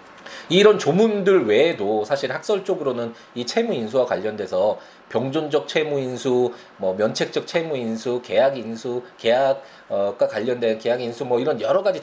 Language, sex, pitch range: Korean, male, 110-185 Hz